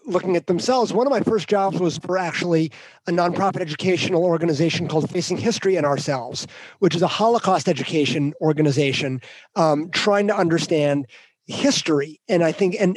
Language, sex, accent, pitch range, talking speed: English, male, American, 170-210 Hz, 160 wpm